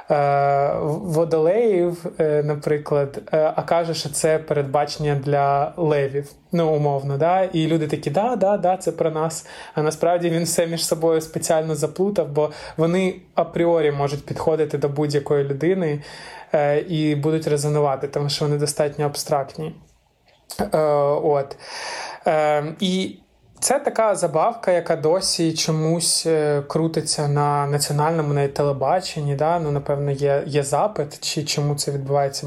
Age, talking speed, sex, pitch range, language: 20-39, 120 wpm, male, 145-165 Hz, Ukrainian